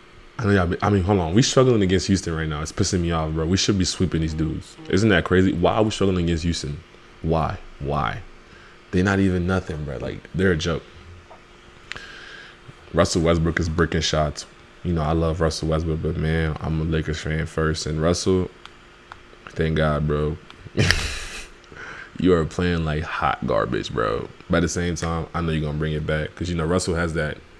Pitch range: 80-90 Hz